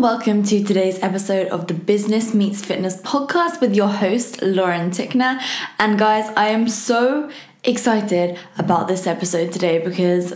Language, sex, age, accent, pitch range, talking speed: English, female, 20-39, British, 190-245 Hz, 150 wpm